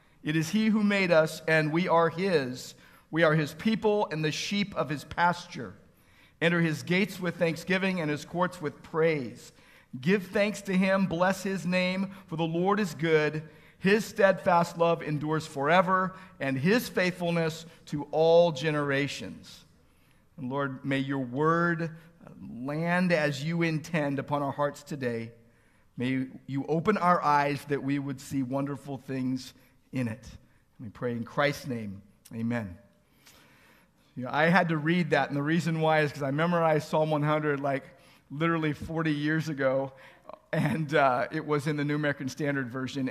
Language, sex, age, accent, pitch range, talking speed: English, male, 50-69, American, 135-170 Hz, 165 wpm